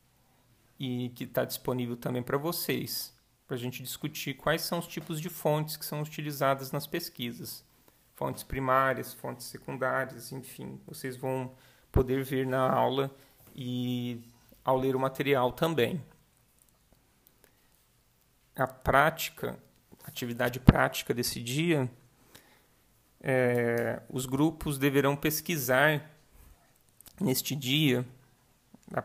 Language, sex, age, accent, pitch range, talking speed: Portuguese, male, 40-59, Brazilian, 125-150 Hz, 105 wpm